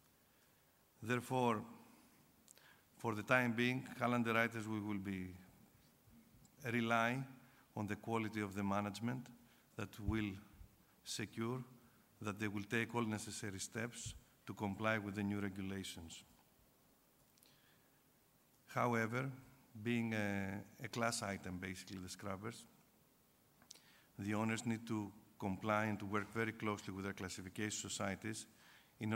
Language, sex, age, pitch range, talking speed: English, male, 50-69, 100-115 Hz, 115 wpm